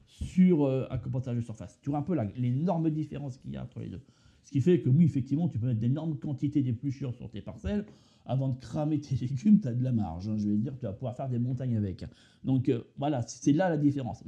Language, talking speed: French, 260 wpm